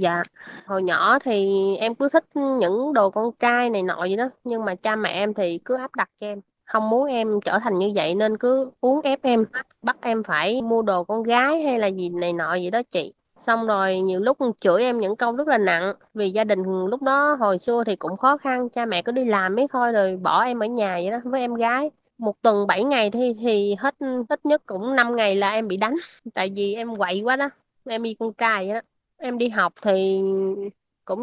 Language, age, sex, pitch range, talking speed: Vietnamese, 20-39, female, 195-245 Hz, 240 wpm